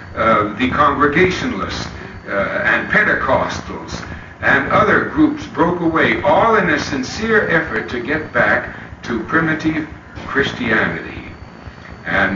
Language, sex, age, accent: English, male, 60-79, American